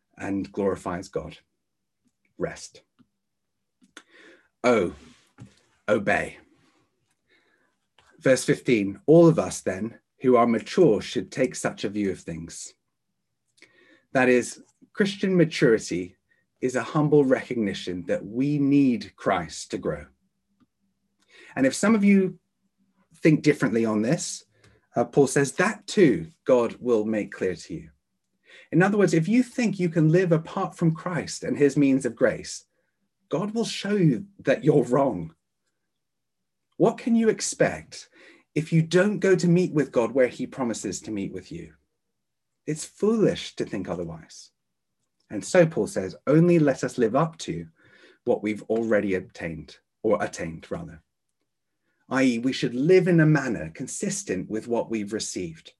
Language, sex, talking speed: English, male, 145 wpm